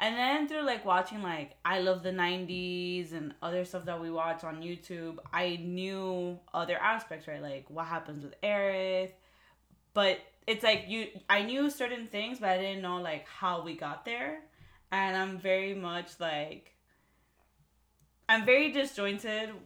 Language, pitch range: English, 165-205 Hz